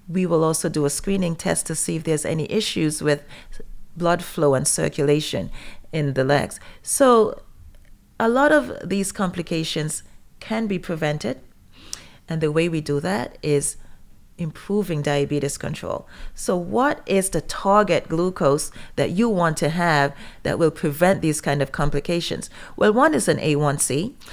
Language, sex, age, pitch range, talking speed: English, female, 30-49, 145-190 Hz, 155 wpm